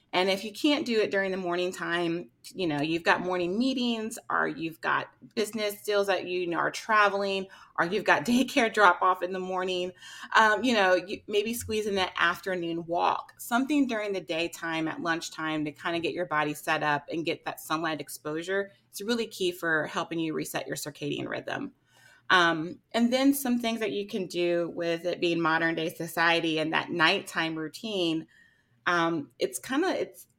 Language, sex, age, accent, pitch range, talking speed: English, female, 30-49, American, 165-215 Hz, 190 wpm